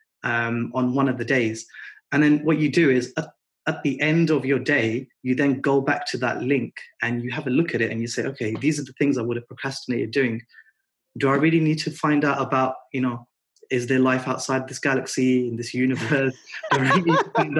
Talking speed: 235 wpm